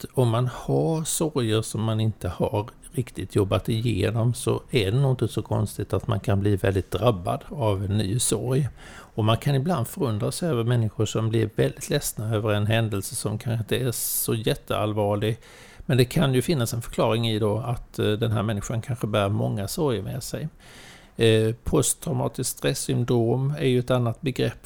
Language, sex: Swedish, male